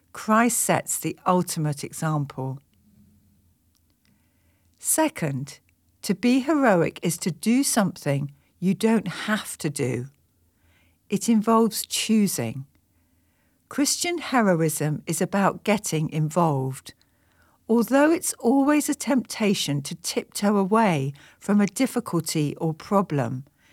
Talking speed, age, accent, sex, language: 100 wpm, 60-79, British, female, English